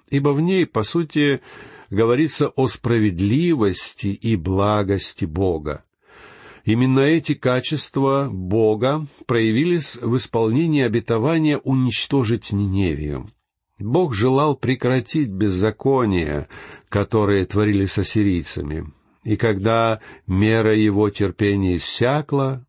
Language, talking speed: Russian, 95 wpm